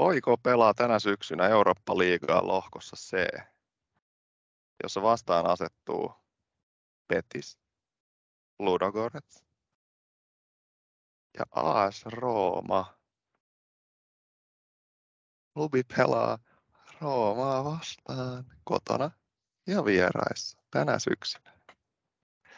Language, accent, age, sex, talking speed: Finnish, native, 30-49, male, 65 wpm